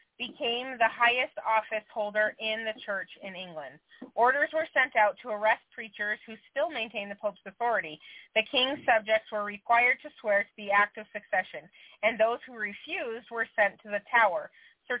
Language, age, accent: English, 30-49, American